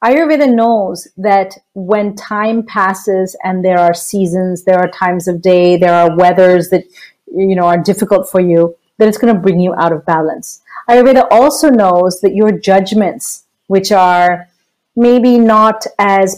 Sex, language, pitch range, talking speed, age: female, English, 180-225 Hz, 165 wpm, 40-59